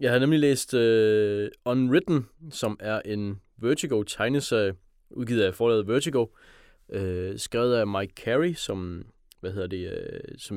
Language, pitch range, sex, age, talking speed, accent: Danish, 95-120 Hz, male, 20-39, 140 wpm, native